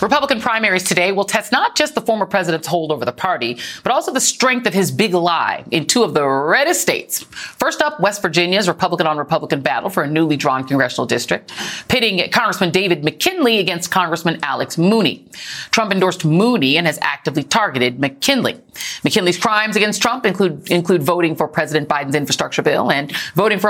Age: 40-59